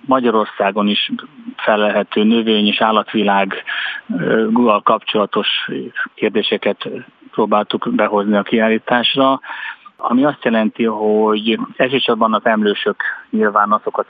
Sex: male